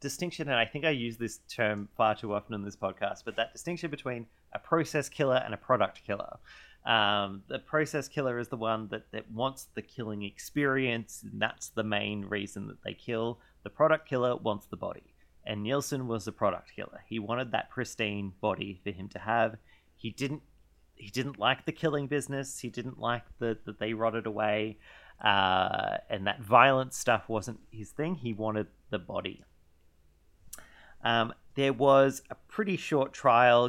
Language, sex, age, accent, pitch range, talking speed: English, male, 30-49, Australian, 105-130 Hz, 180 wpm